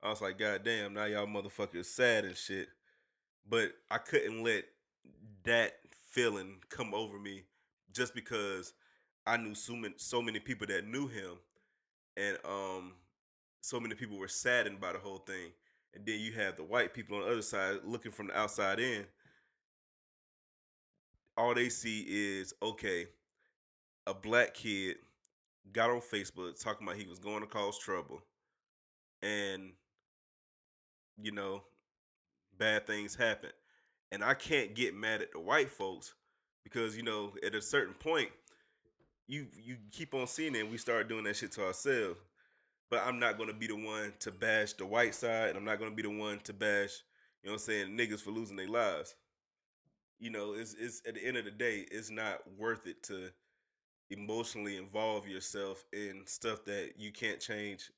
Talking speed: 175 wpm